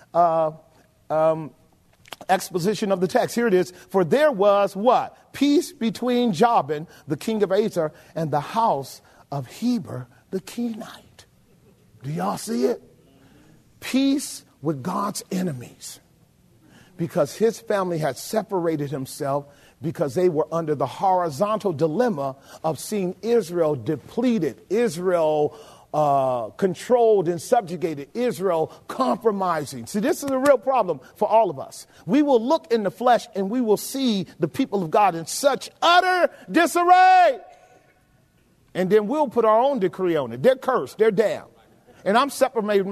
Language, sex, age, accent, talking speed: English, male, 40-59, American, 145 wpm